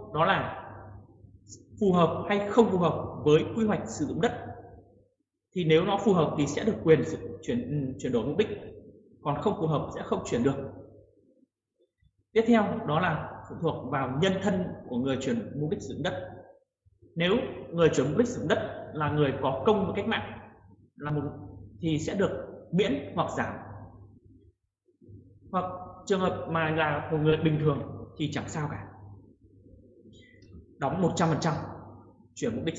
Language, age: Vietnamese, 20-39